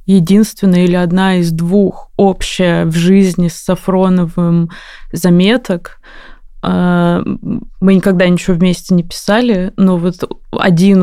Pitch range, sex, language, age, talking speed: 175-195 Hz, female, Russian, 20-39, 110 wpm